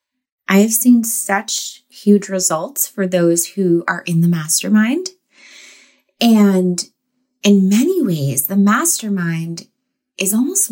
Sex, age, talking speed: female, 20-39, 120 wpm